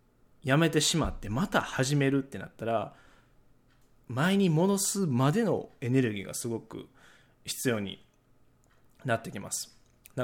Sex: male